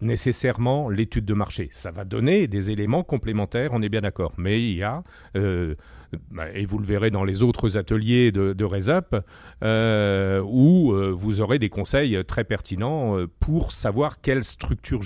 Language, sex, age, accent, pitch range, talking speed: French, male, 40-59, French, 100-140 Hz, 165 wpm